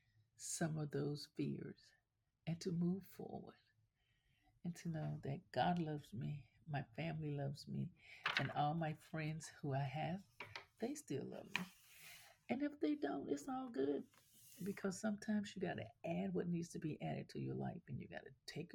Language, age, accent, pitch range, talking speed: English, 50-69, American, 125-175 Hz, 180 wpm